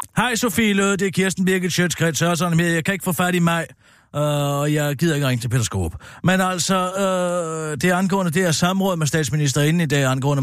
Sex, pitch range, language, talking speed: male, 120-185 Hz, Danish, 225 wpm